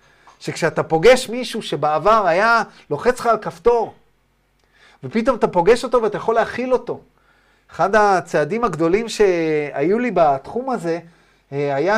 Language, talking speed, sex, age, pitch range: Hebrew, 125 wpm, male, 30-49, 160-230 Hz